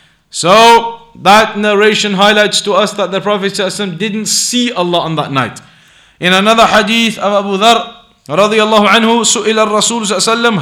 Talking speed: 160 wpm